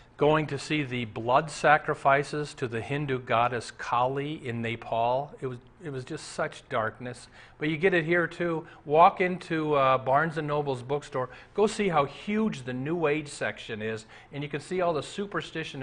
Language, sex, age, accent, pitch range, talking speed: English, male, 40-59, American, 125-170 Hz, 185 wpm